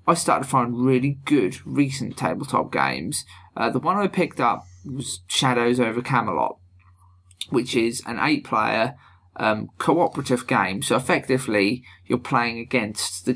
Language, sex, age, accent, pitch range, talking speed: English, male, 20-39, British, 115-135 Hz, 140 wpm